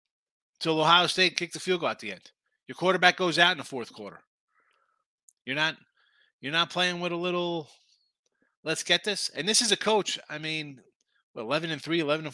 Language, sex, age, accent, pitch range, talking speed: English, male, 30-49, American, 140-185 Hz, 205 wpm